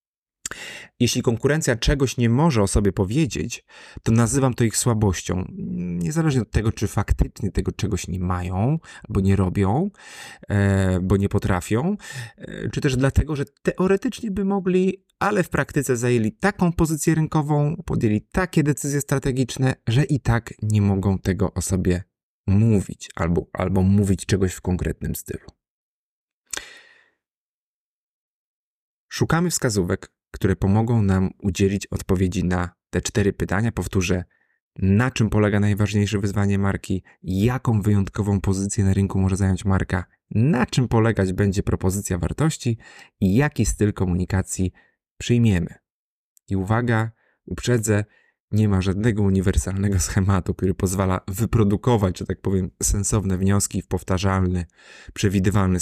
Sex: male